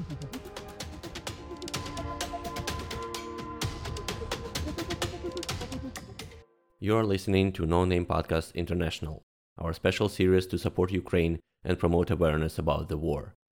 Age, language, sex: 30-49, Ukrainian, male